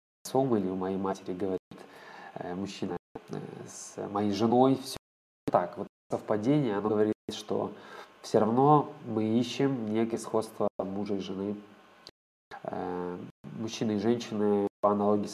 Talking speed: 115 wpm